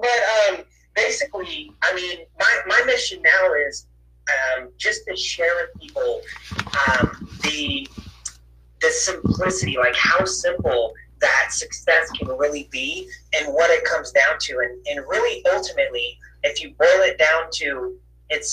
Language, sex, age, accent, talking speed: English, male, 30-49, American, 145 wpm